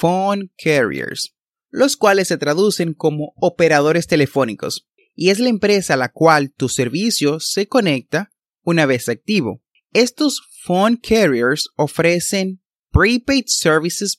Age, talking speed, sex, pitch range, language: 30-49, 125 wpm, male, 145-210 Hz, Spanish